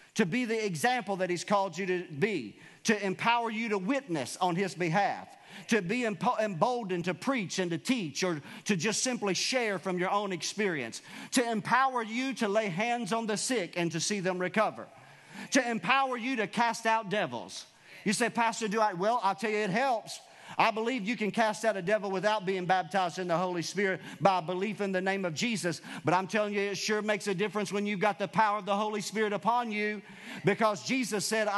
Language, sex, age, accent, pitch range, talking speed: English, male, 40-59, American, 190-230 Hz, 215 wpm